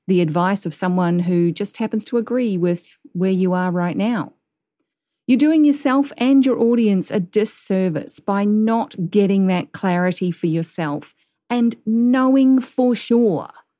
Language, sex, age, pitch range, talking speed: English, female, 40-59, 180-260 Hz, 150 wpm